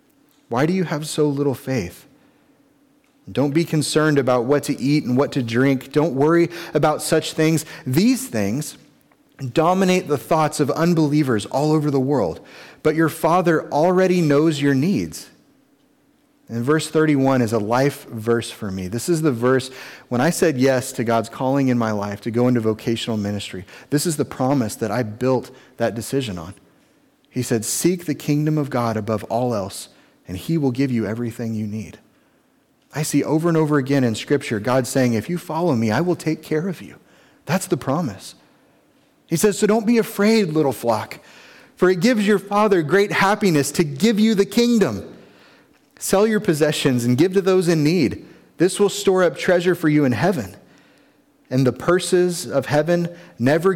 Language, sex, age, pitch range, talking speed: English, male, 30-49, 125-175 Hz, 185 wpm